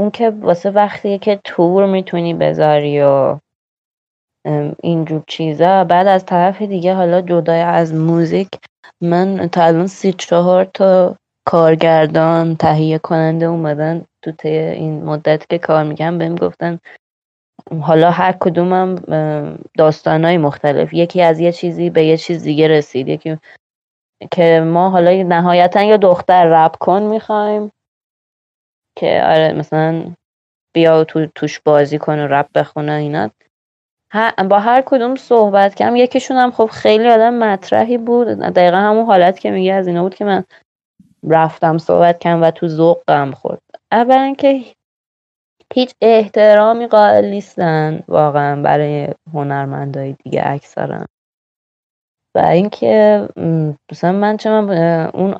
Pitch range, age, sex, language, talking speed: 160-195 Hz, 20-39, female, Persian, 135 wpm